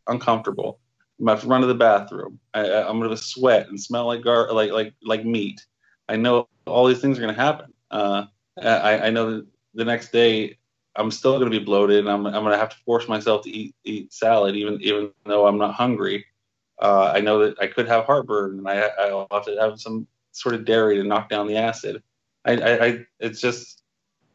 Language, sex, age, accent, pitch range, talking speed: English, male, 20-39, American, 100-115 Hz, 225 wpm